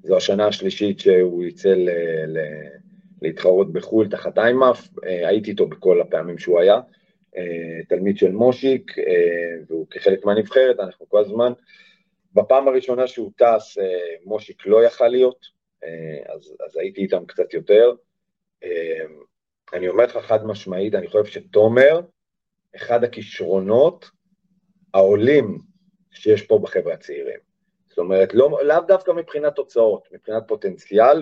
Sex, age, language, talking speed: male, 40-59, Hebrew, 125 wpm